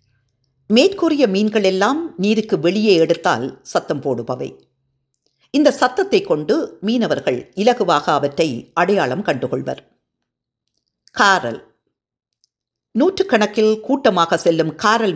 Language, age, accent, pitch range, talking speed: Tamil, 50-69, native, 155-235 Hz, 85 wpm